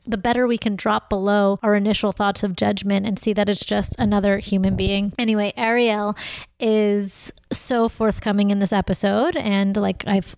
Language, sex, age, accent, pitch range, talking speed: English, female, 30-49, American, 200-220 Hz, 175 wpm